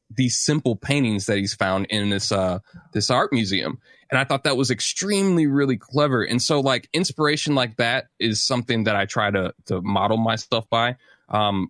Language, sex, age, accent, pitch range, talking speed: English, male, 20-39, American, 100-125 Hz, 190 wpm